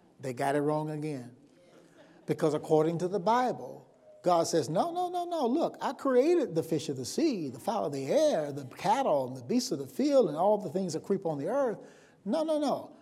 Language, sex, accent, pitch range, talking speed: English, male, American, 185-265 Hz, 225 wpm